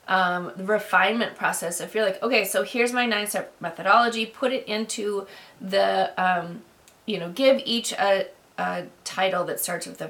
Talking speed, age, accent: 180 wpm, 30-49, American